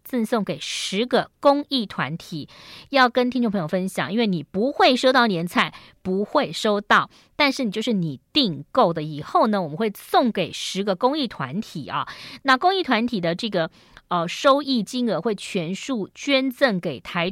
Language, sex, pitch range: Chinese, female, 175-245 Hz